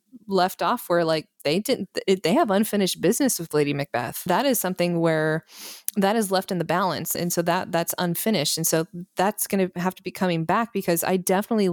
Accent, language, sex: American, English, female